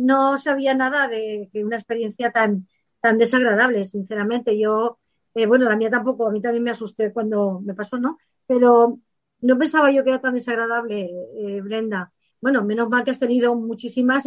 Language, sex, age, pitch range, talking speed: Spanish, female, 50-69, 215-245 Hz, 175 wpm